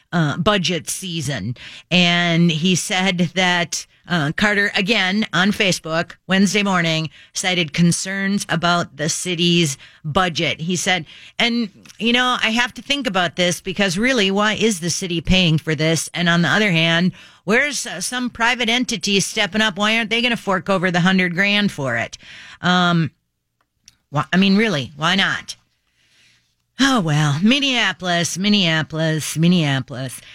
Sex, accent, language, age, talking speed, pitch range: female, American, English, 40-59, 150 wpm, 165-215 Hz